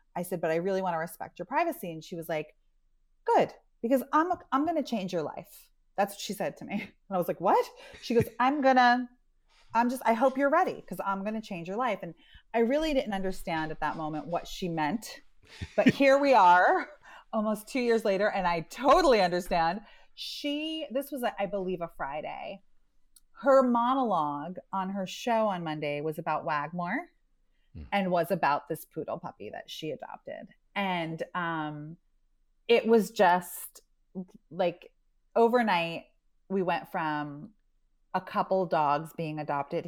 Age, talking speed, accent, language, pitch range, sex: 30-49, 175 wpm, American, English, 175-265 Hz, female